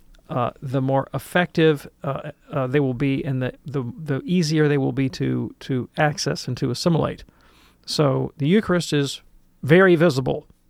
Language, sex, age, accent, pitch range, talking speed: English, male, 40-59, American, 145-175 Hz, 165 wpm